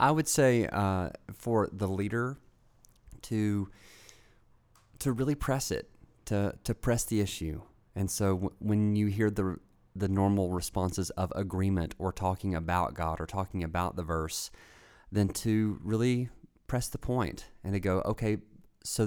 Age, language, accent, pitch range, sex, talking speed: 30-49, English, American, 90-105 Hz, male, 155 wpm